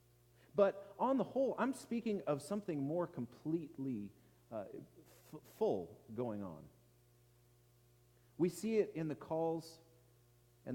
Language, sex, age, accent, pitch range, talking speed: English, male, 40-59, American, 120-170 Hz, 115 wpm